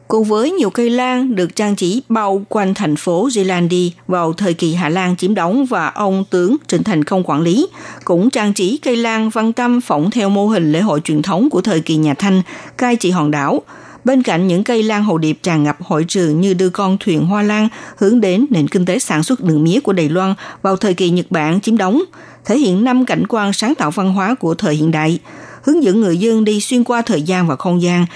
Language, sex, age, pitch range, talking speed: Vietnamese, female, 60-79, 175-235 Hz, 240 wpm